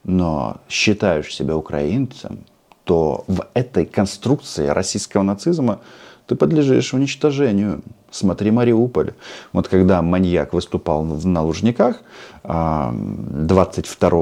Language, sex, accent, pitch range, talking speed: Russian, male, native, 90-120 Hz, 95 wpm